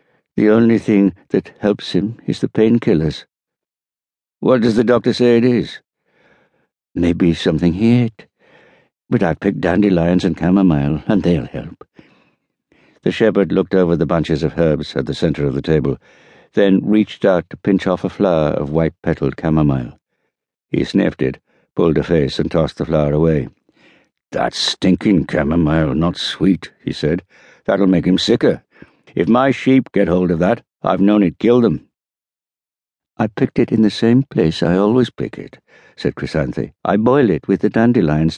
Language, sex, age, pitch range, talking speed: English, male, 60-79, 80-110 Hz, 165 wpm